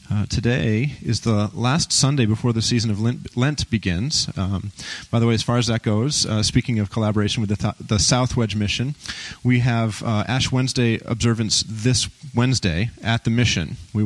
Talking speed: 190 wpm